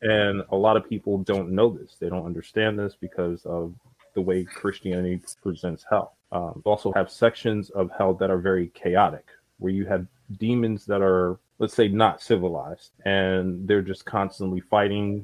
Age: 20-39